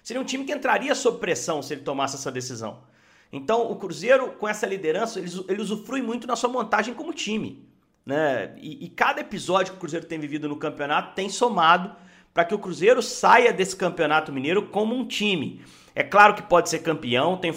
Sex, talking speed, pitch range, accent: male, 200 wpm, 155-210 Hz, Brazilian